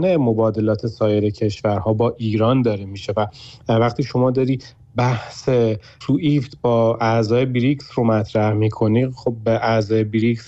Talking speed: 135 wpm